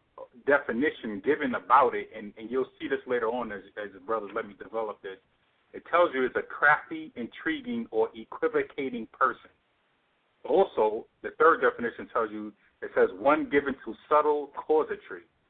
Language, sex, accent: English, male, American